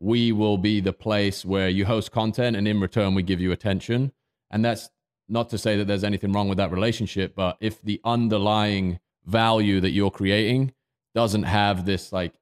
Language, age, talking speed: English, 30-49, 195 wpm